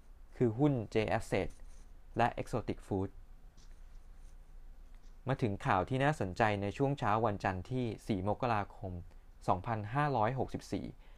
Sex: male